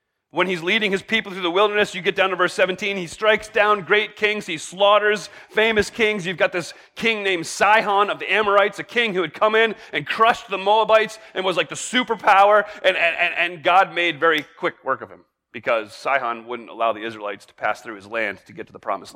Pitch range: 160-215 Hz